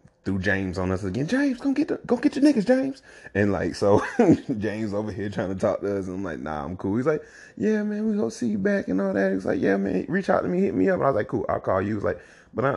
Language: English